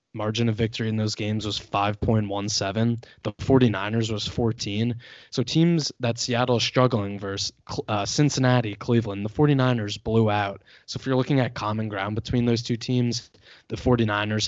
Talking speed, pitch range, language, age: 160 wpm, 105-120 Hz, English, 20-39